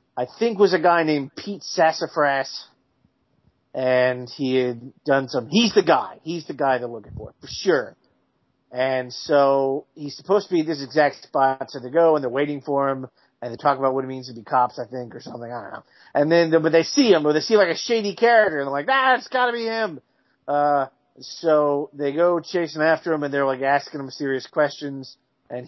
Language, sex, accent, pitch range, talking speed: English, male, American, 130-170 Hz, 230 wpm